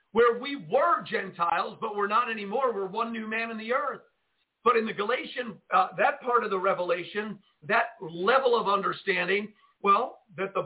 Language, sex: English, male